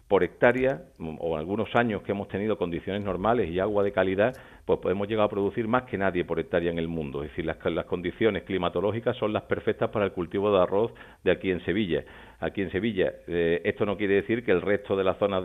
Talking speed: 230 wpm